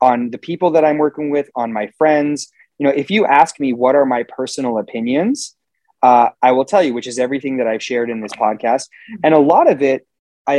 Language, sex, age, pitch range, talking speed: English, male, 30-49, 125-155 Hz, 230 wpm